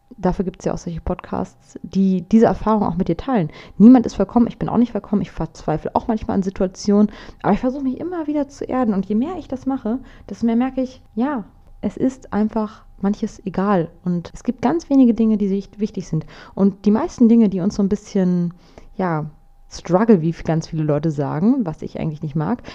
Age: 20-39